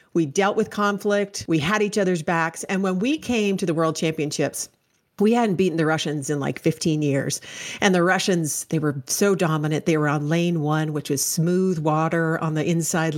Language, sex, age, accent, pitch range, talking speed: English, female, 40-59, American, 160-210 Hz, 205 wpm